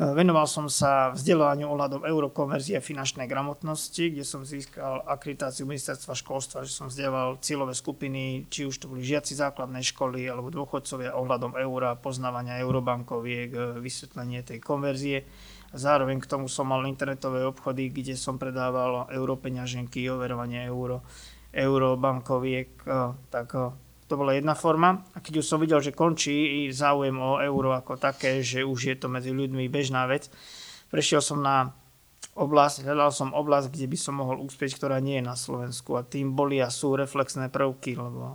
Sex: male